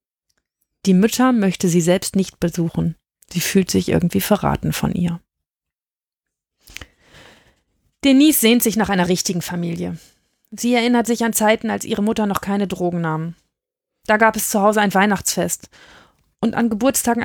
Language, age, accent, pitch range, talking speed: German, 30-49, German, 185-230 Hz, 150 wpm